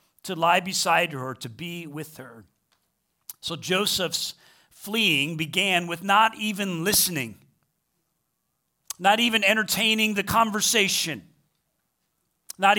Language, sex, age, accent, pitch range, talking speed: English, male, 40-59, American, 155-205 Hz, 105 wpm